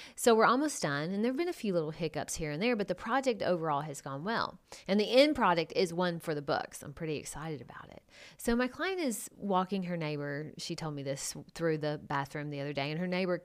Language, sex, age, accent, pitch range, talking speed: English, female, 30-49, American, 160-220 Hz, 250 wpm